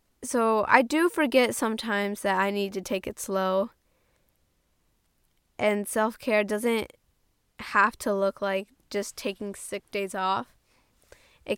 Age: 10-29